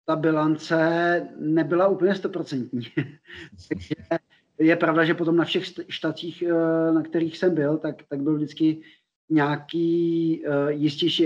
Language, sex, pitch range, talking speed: Czech, male, 145-160 Hz, 125 wpm